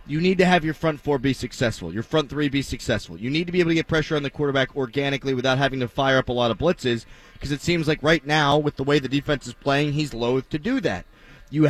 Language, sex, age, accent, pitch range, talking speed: English, male, 30-49, American, 140-195 Hz, 275 wpm